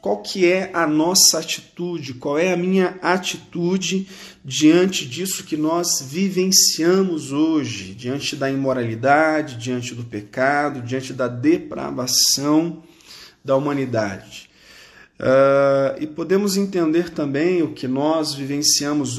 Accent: Brazilian